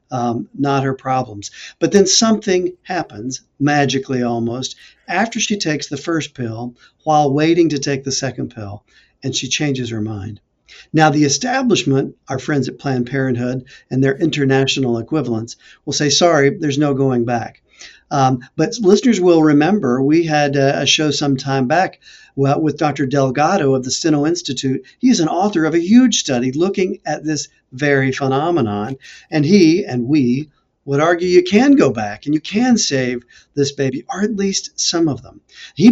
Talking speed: 170 wpm